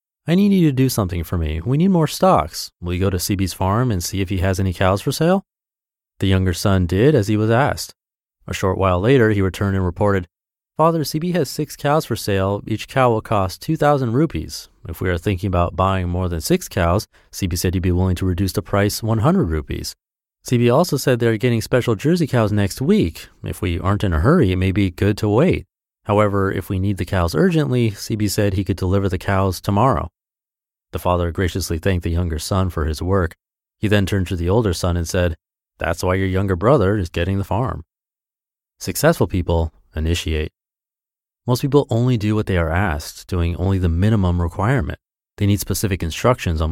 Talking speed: 210 wpm